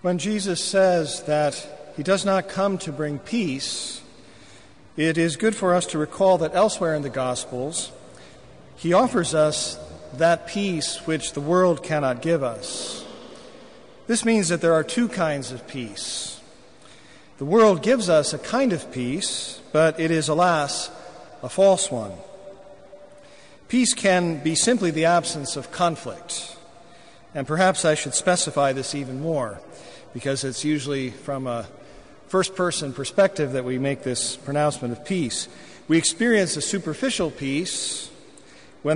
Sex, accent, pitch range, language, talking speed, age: male, American, 140-185 Hz, English, 145 wpm, 50-69